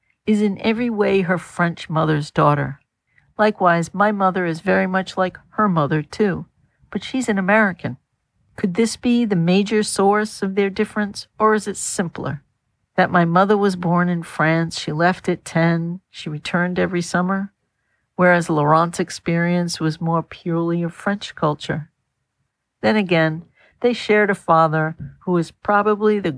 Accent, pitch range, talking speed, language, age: American, 155-195 Hz, 155 wpm, English, 50-69